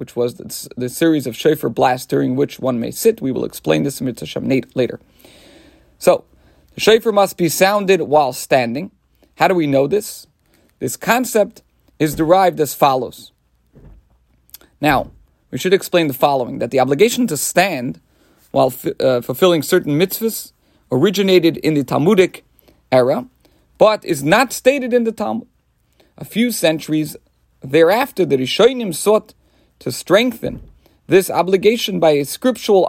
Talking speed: 150 wpm